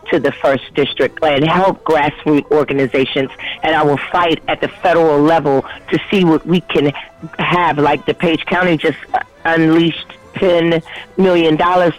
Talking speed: 155 wpm